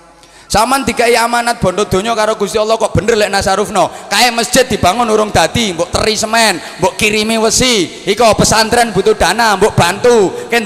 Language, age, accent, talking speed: Indonesian, 20-39, native, 165 wpm